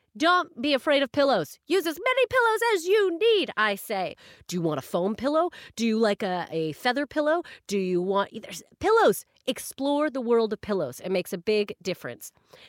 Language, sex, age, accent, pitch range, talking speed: English, female, 30-49, American, 190-260 Hz, 195 wpm